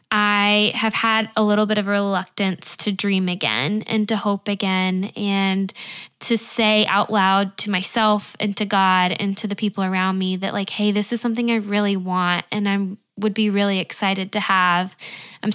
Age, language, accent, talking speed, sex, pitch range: 10-29, English, American, 190 wpm, female, 190-215 Hz